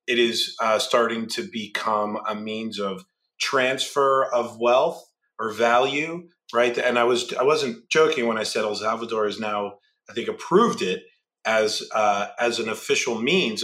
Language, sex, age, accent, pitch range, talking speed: English, male, 30-49, American, 110-175 Hz, 165 wpm